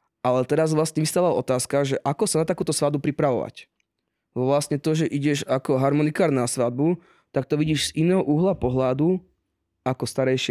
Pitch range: 125-145 Hz